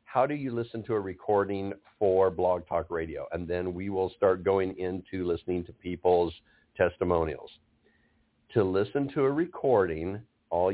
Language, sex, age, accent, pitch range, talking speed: English, male, 50-69, American, 90-110 Hz, 155 wpm